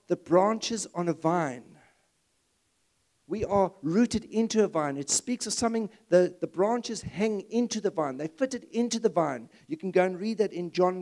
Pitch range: 175-235 Hz